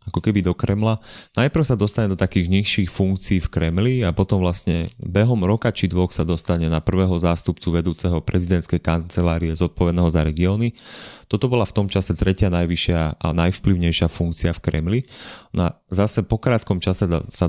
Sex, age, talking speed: male, 30-49, 170 wpm